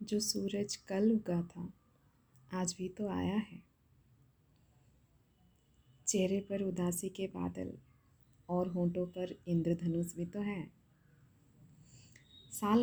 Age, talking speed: 20-39, 110 wpm